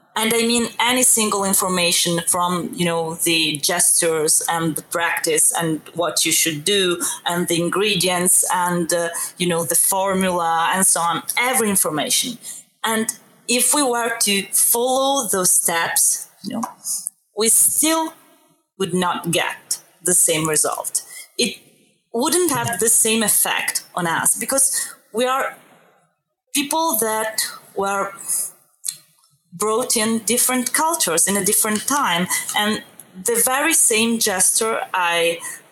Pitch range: 175-235 Hz